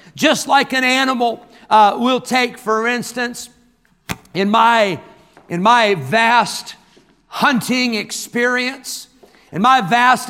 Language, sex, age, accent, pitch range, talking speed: English, male, 50-69, American, 180-230 Hz, 110 wpm